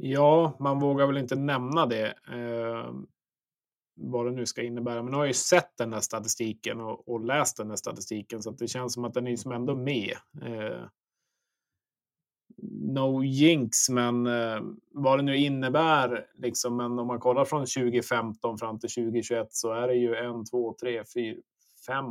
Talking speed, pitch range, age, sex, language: 180 wpm, 115-130 Hz, 20-39, male, Swedish